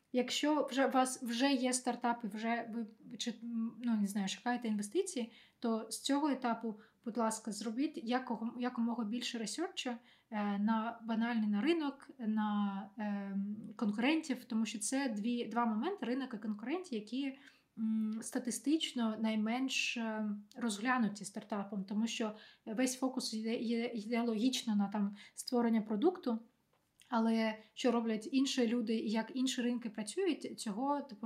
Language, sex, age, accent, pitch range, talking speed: Ukrainian, female, 20-39, native, 220-245 Hz, 130 wpm